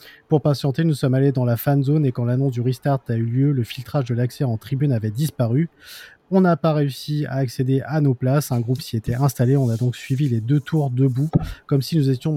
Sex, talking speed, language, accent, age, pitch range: male, 250 wpm, French, French, 20-39, 115-140 Hz